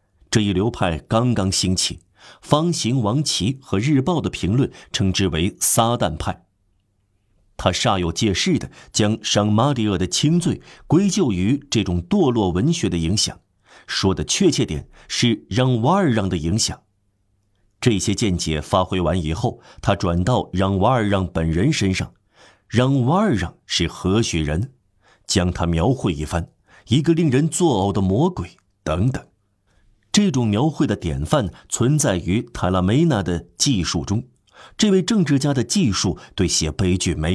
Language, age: Chinese, 50-69